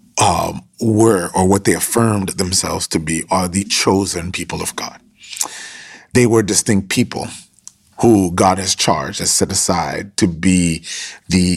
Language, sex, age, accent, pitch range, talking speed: English, male, 30-49, American, 90-100 Hz, 150 wpm